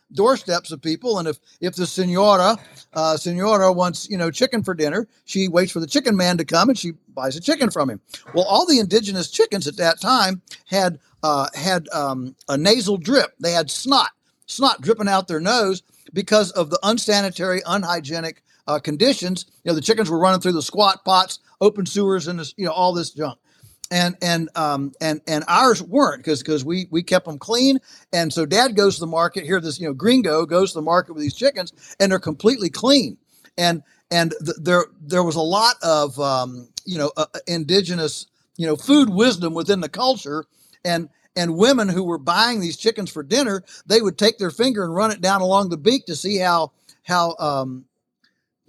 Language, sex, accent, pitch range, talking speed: English, male, American, 160-205 Hz, 200 wpm